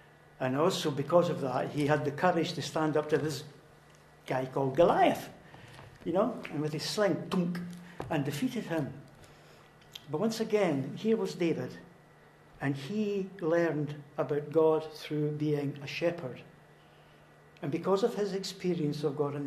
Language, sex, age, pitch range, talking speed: English, male, 60-79, 145-185 Hz, 150 wpm